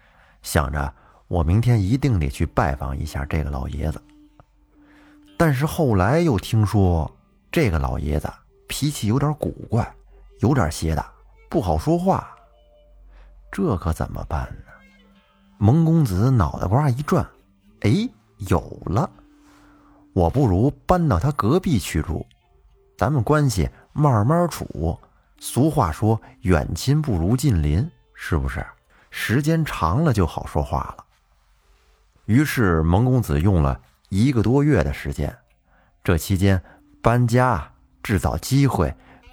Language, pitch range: Chinese, 80-130 Hz